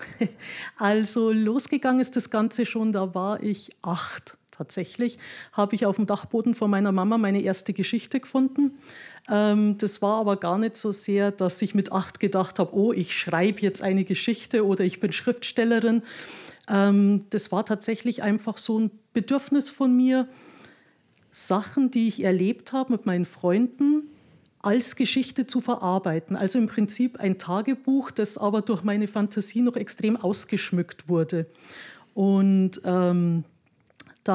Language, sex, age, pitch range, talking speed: German, female, 50-69, 200-250 Hz, 145 wpm